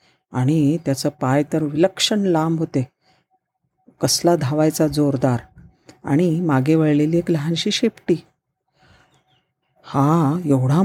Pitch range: 145-190 Hz